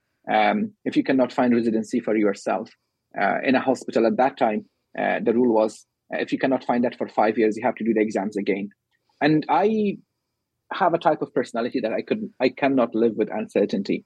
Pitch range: 115-140 Hz